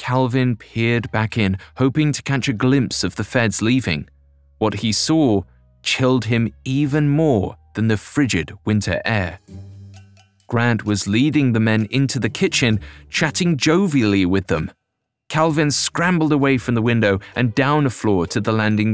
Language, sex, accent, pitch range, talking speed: English, male, British, 100-140 Hz, 160 wpm